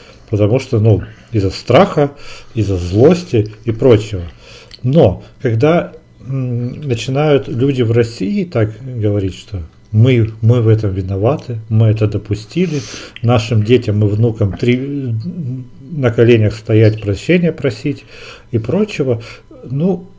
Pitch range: 110-130 Hz